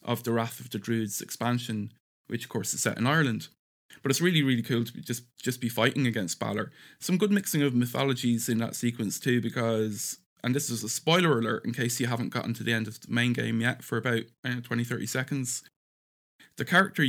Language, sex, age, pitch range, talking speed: English, male, 20-39, 110-130 Hz, 220 wpm